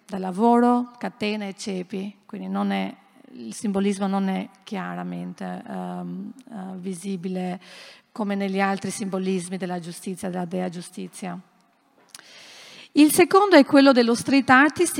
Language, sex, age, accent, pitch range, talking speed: Italian, female, 40-59, native, 200-260 Hz, 110 wpm